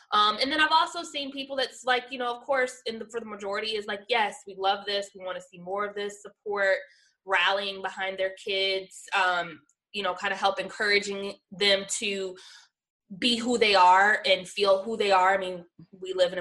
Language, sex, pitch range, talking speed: English, female, 185-235 Hz, 215 wpm